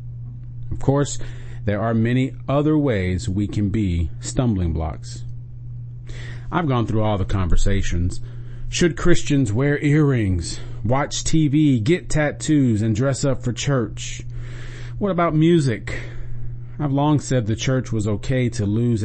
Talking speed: 135 wpm